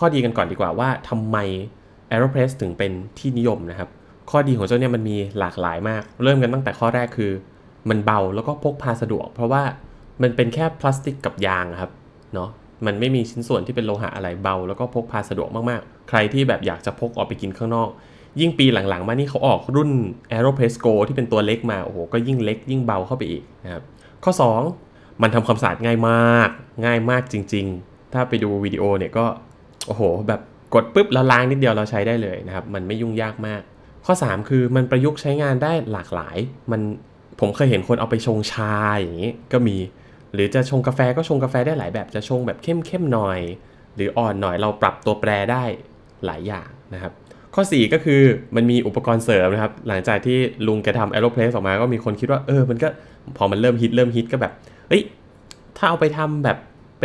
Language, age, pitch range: Thai, 20-39, 105-130 Hz